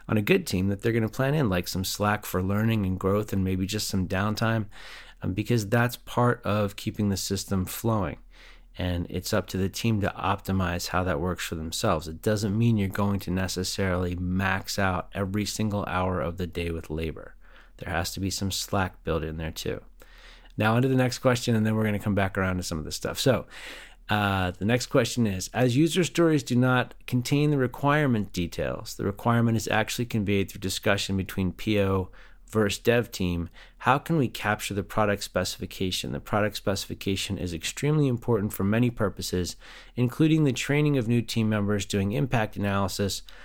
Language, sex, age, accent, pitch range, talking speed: English, male, 30-49, American, 95-115 Hz, 195 wpm